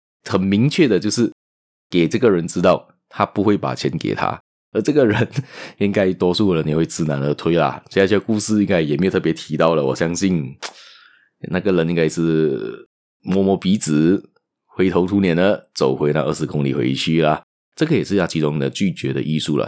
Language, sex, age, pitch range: Chinese, male, 20-39, 75-100 Hz